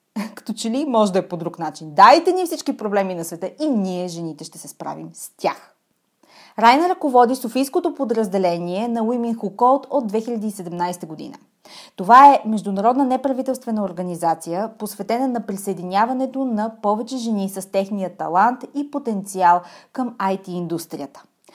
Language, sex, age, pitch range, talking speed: Bulgarian, female, 30-49, 185-265 Hz, 150 wpm